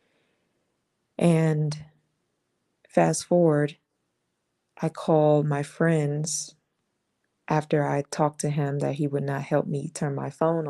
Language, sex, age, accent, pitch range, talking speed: English, female, 20-39, American, 145-165 Hz, 120 wpm